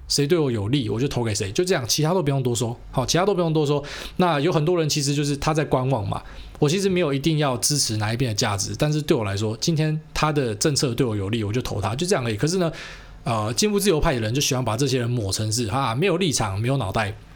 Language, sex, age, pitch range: Chinese, male, 20-39, 110-155 Hz